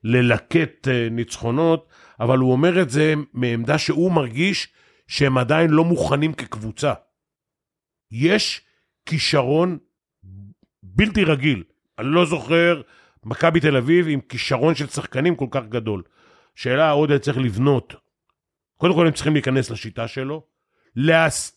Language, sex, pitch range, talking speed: Hebrew, male, 120-155 Hz, 130 wpm